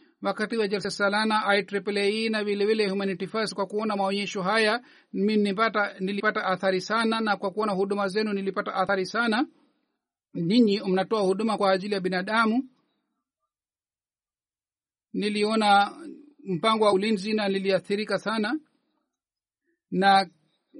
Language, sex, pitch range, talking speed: Swahili, male, 195-235 Hz, 115 wpm